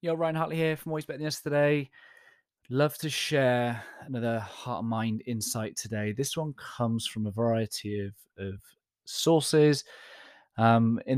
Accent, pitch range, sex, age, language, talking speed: British, 100-125 Hz, male, 20-39, English, 155 wpm